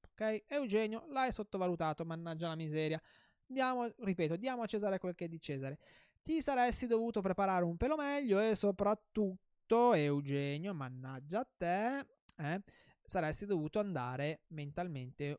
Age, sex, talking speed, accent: 20-39, male, 135 wpm, native